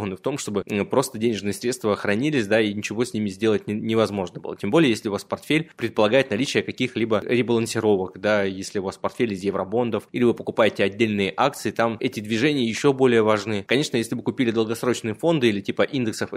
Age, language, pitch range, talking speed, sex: 20-39, Russian, 105-125 Hz, 190 wpm, male